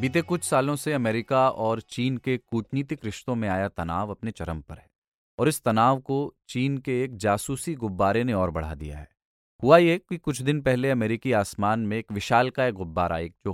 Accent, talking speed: native, 210 wpm